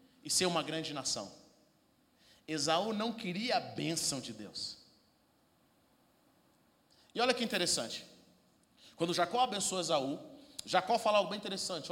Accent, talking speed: Brazilian, 125 wpm